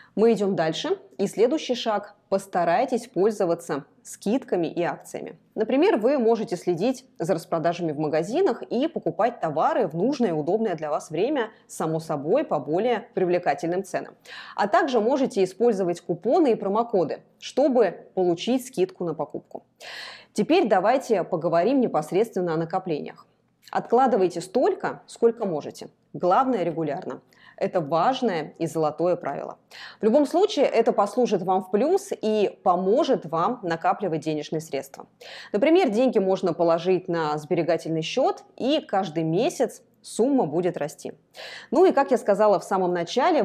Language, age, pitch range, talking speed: Russian, 20-39, 170-240 Hz, 135 wpm